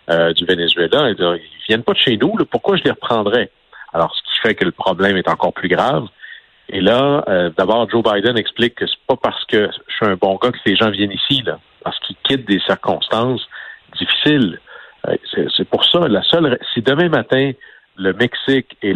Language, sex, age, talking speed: French, male, 50-69, 220 wpm